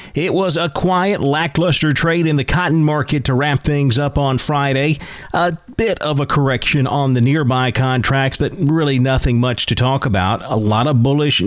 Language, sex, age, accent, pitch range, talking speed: English, male, 40-59, American, 115-145 Hz, 190 wpm